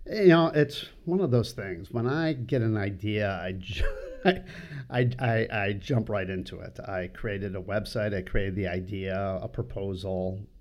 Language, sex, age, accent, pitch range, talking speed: English, male, 50-69, American, 95-120 Hz, 180 wpm